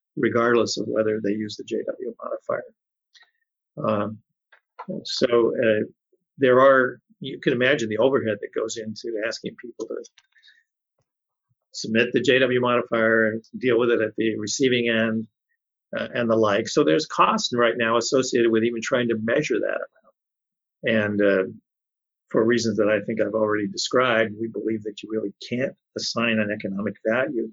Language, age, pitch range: English, 50-69, 110-125 Hz